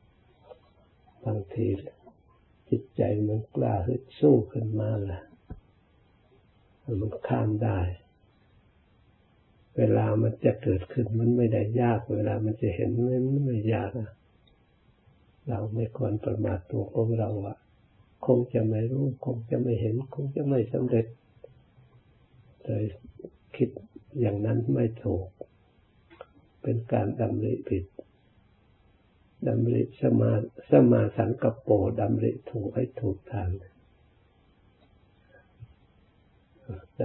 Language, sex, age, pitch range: Thai, male, 60-79, 100-120 Hz